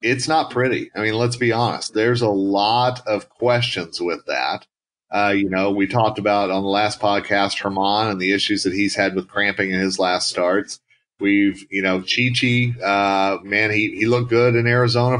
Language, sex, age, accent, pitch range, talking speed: English, male, 40-59, American, 100-120 Hz, 195 wpm